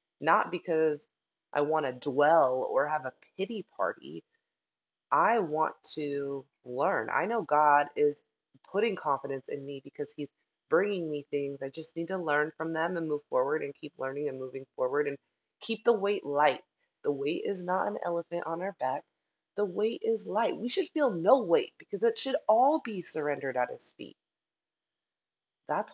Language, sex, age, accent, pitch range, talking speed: English, female, 20-39, American, 140-205 Hz, 180 wpm